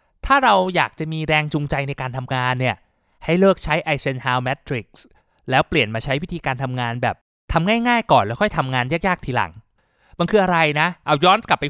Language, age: Thai, 20-39